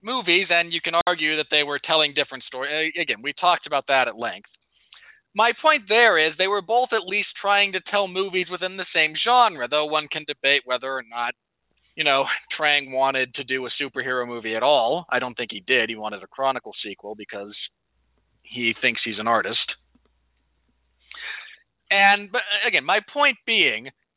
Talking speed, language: 185 wpm, English